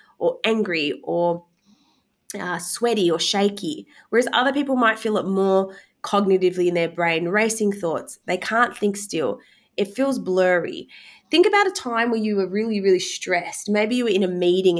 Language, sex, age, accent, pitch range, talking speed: English, female, 20-39, Australian, 175-235 Hz, 175 wpm